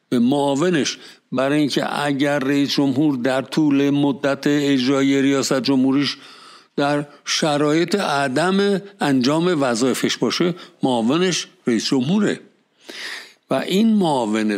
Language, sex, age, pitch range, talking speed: Persian, male, 60-79, 120-170 Hz, 105 wpm